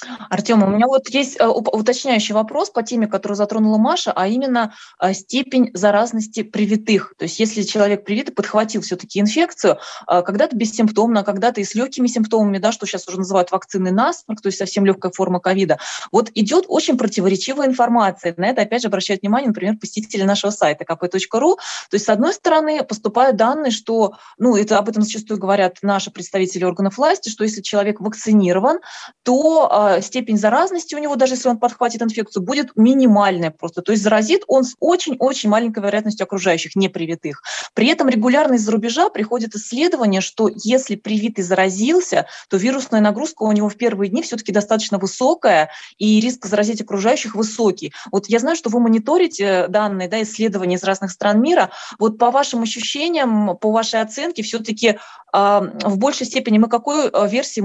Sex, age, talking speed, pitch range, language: female, 20-39, 170 wpm, 200-245 Hz, Russian